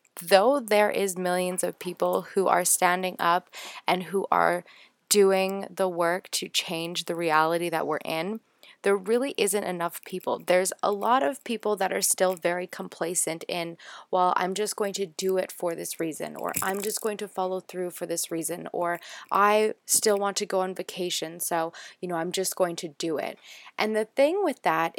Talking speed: 195 wpm